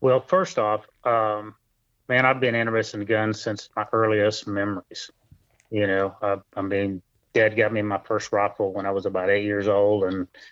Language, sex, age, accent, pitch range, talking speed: English, male, 30-49, American, 105-115 Hz, 190 wpm